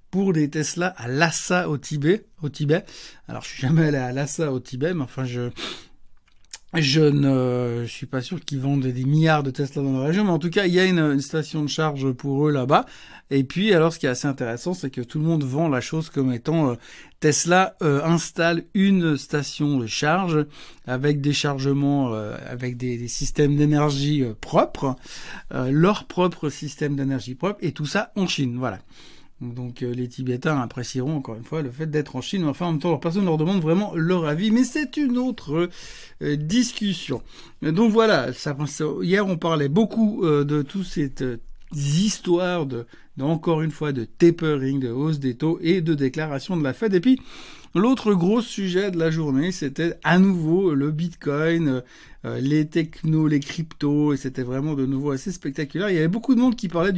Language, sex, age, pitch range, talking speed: French, male, 60-79, 140-175 Hz, 205 wpm